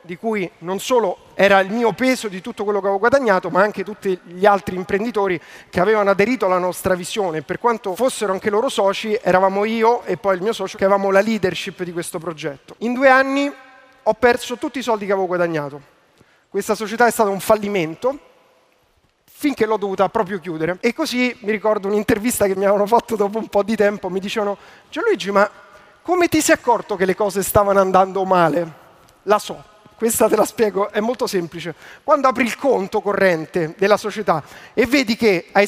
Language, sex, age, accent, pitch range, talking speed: Italian, male, 30-49, native, 185-230 Hz, 195 wpm